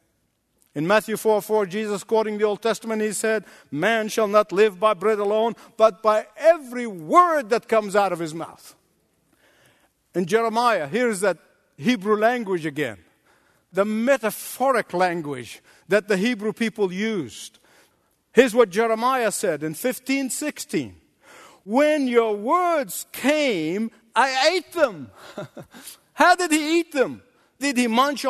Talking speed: 135 wpm